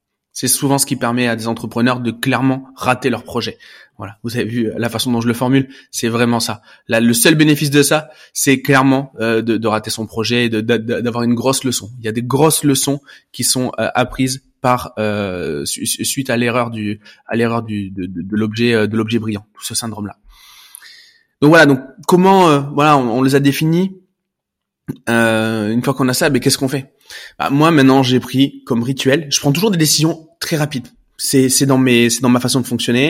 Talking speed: 225 wpm